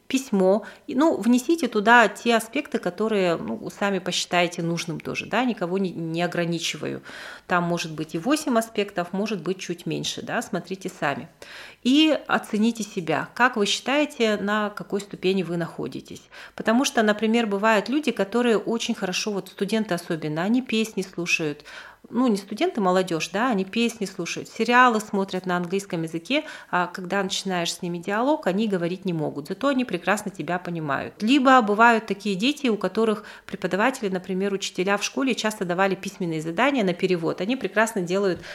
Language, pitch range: Russian, 180-230 Hz